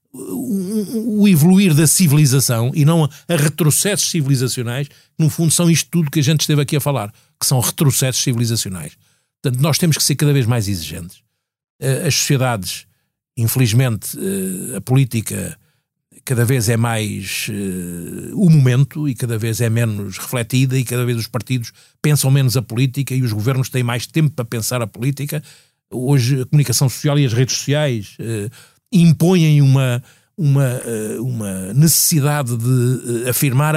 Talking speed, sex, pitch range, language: 150 wpm, male, 120-155 Hz, Portuguese